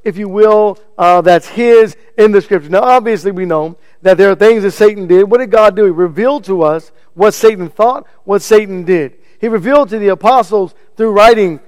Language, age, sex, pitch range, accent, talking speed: English, 50-69, male, 180-230 Hz, American, 210 wpm